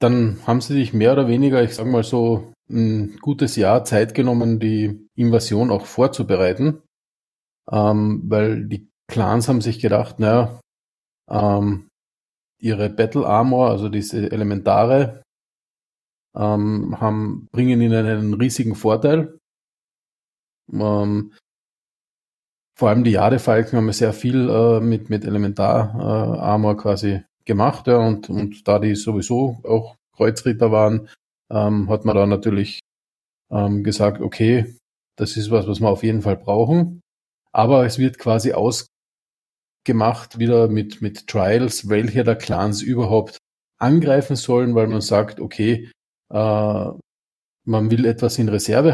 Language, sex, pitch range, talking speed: German, male, 105-120 Hz, 130 wpm